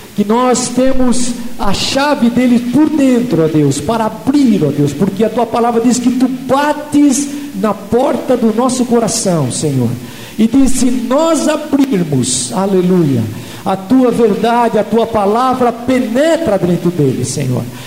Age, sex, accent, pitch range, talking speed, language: 50-69, male, Brazilian, 230-270 Hz, 150 wpm, Portuguese